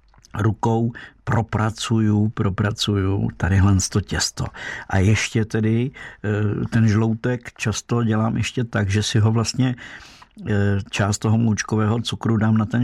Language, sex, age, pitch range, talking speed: Czech, male, 50-69, 105-115 Hz, 120 wpm